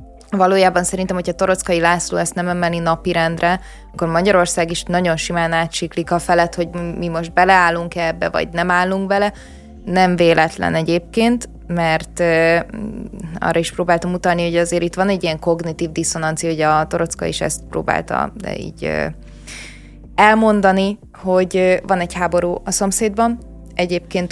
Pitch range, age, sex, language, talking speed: 165-185 Hz, 20-39, female, Hungarian, 150 wpm